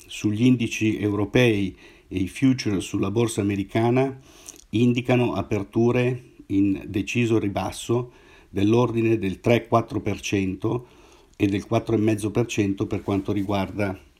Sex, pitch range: male, 100-115 Hz